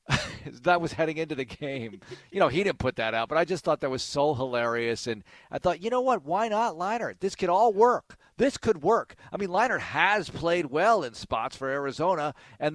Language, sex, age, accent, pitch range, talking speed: English, male, 40-59, American, 130-190 Hz, 225 wpm